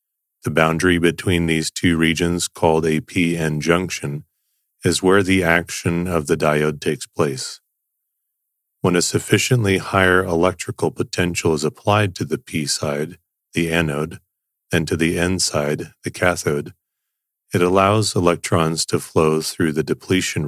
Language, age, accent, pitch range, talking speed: English, 30-49, American, 80-95 Hz, 135 wpm